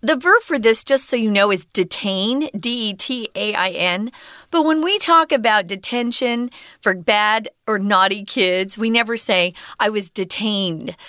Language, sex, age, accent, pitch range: Chinese, female, 40-59, American, 195-275 Hz